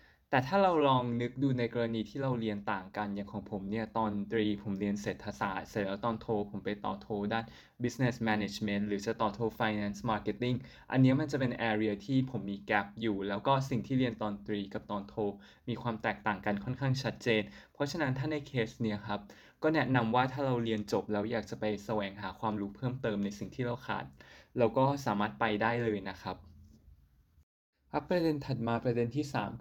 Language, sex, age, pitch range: Thai, male, 20-39, 105-125 Hz